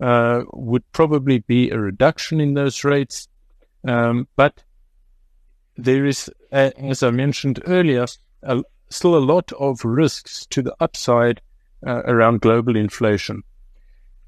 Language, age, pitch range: English, 50-69, 115-140 Hz